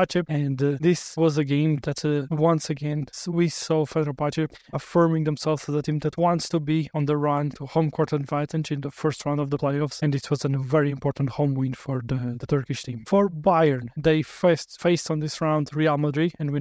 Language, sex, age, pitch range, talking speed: English, male, 20-39, 145-160 Hz, 220 wpm